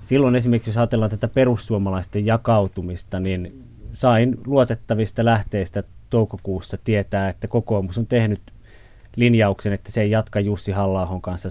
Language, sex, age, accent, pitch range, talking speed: Finnish, male, 30-49, native, 100-115 Hz, 130 wpm